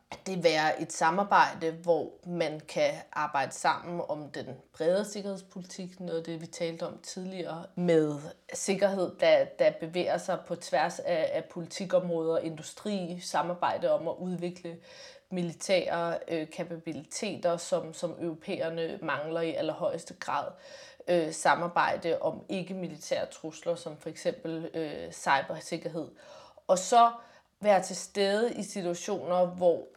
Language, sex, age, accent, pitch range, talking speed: Danish, female, 30-49, native, 165-190 Hz, 125 wpm